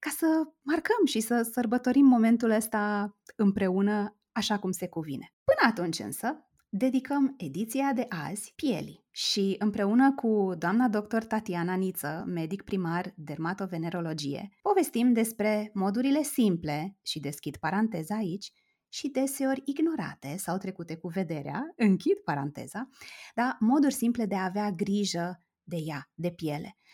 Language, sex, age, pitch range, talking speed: Romanian, female, 20-39, 185-245 Hz, 130 wpm